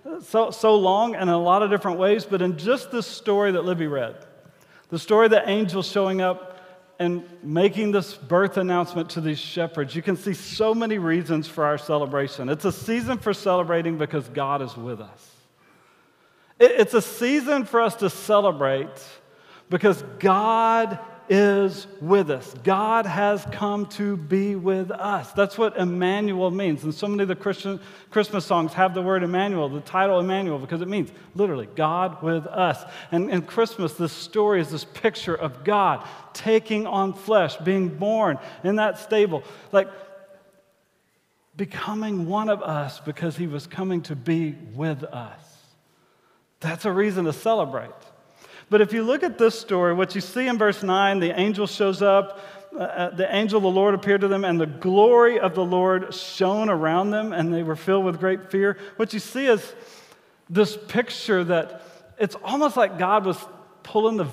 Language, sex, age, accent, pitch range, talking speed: English, male, 40-59, American, 170-205 Hz, 175 wpm